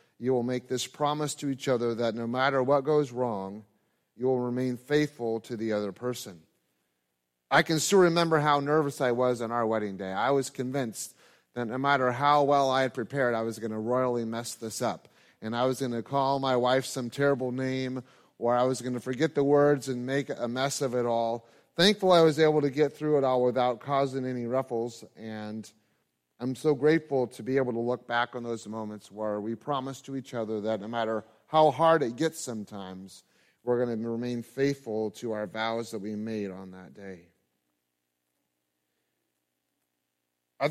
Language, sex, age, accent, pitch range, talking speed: English, male, 30-49, American, 110-140 Hz, 200 wpm